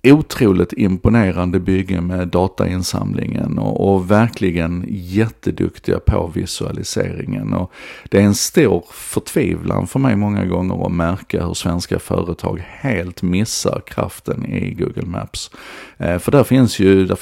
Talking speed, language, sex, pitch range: 130 wpm, Swedish, male, 90-110 Hz